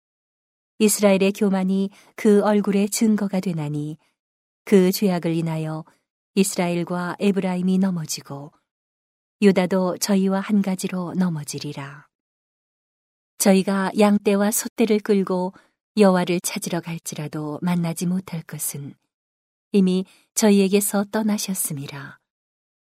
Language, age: Korean, 40-59